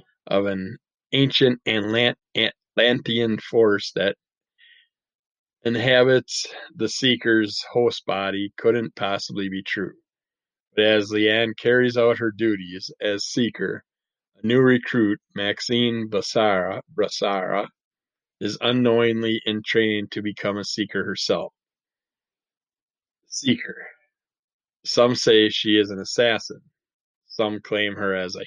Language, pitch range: English, 105-125 Hz